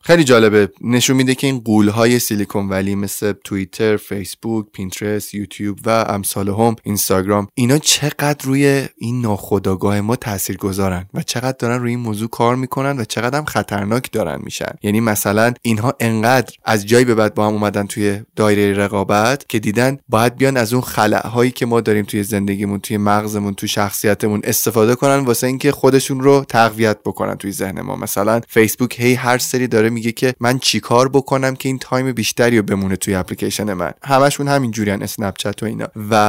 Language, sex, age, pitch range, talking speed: Persian, male, 20-39, 105-130 Hz, 180 wpm